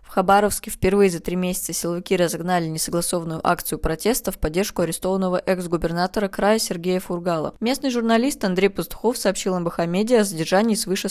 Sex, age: female, 20-39